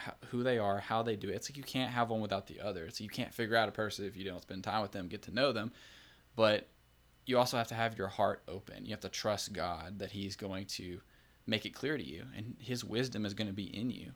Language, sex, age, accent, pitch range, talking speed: English, male, 10-29, American, 95-115 Hz, 280 wpm